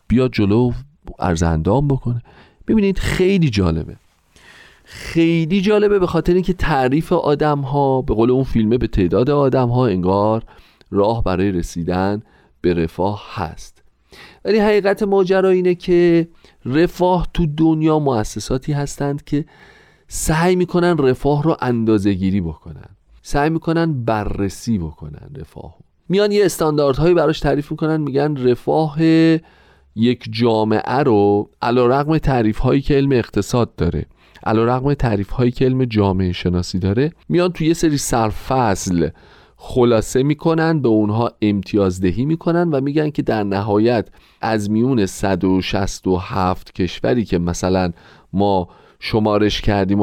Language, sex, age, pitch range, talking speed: Persian, male, 40-59, 100-155 Hz, 125 wpm